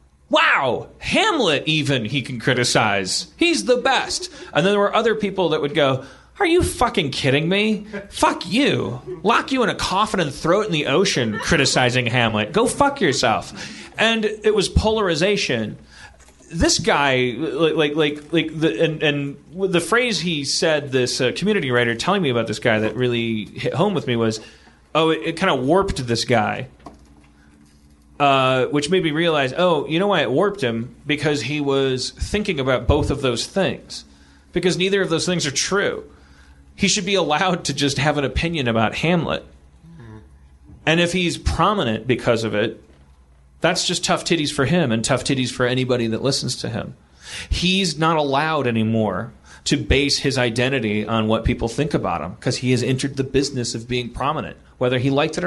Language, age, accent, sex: English, 30-49, American, male